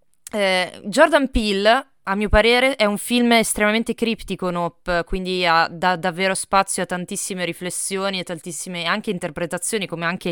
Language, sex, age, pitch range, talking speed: Italian, female, 20-39, 175-225 Hz, 150 wpm